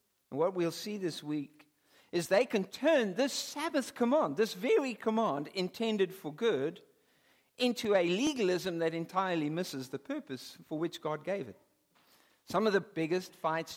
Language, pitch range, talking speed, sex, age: English, 155-255 Hz, 160 wpm, male, 60-79